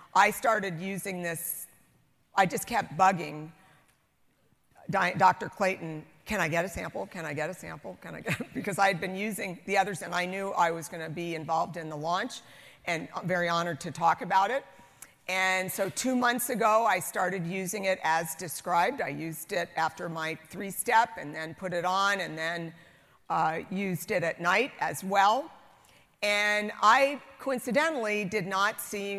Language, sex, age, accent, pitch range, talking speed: English, female, 50-69, American, 170-210 Hz, 180 wpm